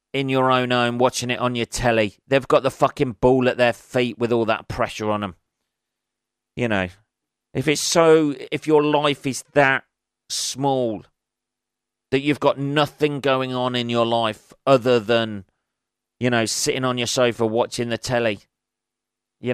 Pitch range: 105-135 Hz